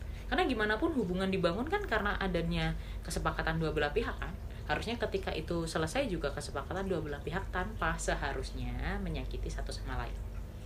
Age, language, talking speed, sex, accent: 20-39, Indonesian, 160 wpm, female, native